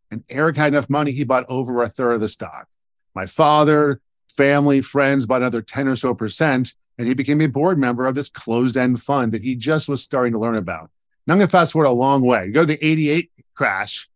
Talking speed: 235 wpm